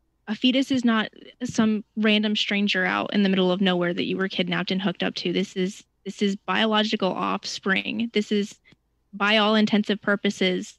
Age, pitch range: 20-39, 185-210 Hz